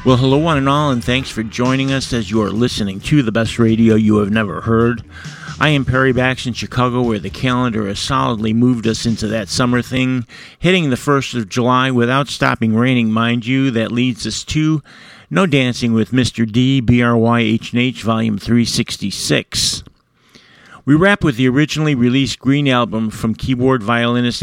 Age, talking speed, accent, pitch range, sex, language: 50-69, 175 wpm, American, 115-130 Hz, male, English